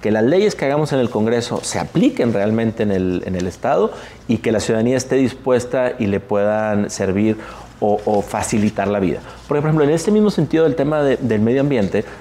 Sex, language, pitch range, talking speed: male, Spanish, 105-130 Hz, 200 wpm